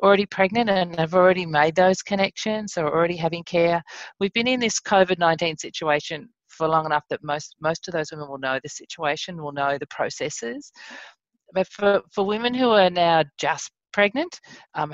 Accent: Australian